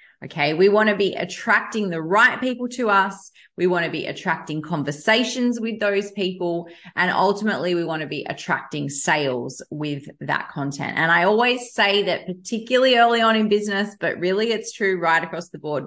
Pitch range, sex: 160-215 Hz, female